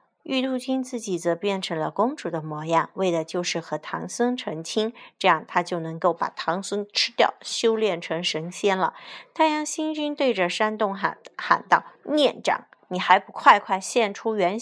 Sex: female